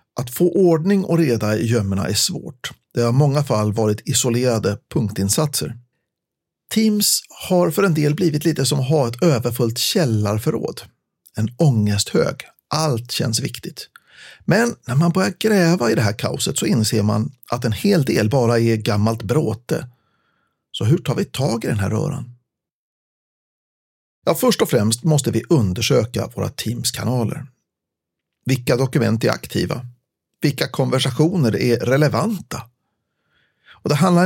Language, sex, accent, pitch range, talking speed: Swedish, male, native, 110-155 Hz, 150 wpm